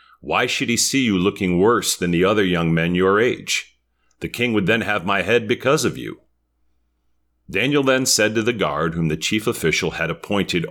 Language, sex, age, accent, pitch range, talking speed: English, male, 40-59, American, 80-115 Hz, 200 wpm